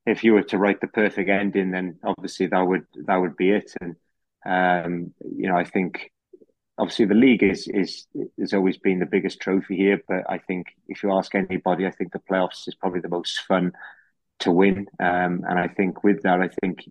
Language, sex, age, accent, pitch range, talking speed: English, male, 20-39, British, 90-100 Hz, 215 wpm